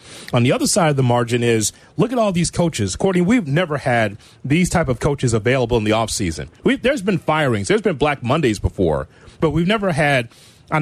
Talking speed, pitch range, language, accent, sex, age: 215 wpm, 120-160 Hz, English, American, male, 30-49